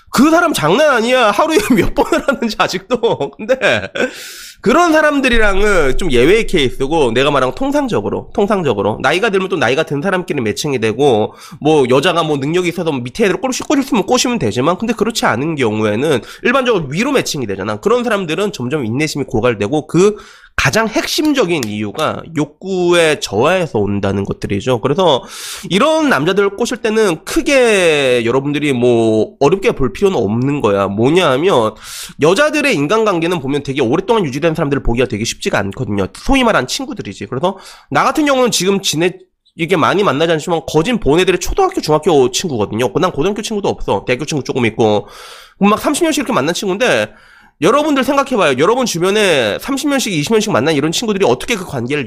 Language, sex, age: Korean, male, 20-39